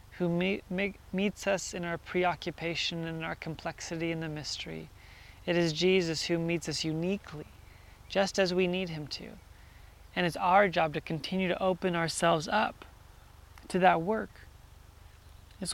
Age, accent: 30-49, American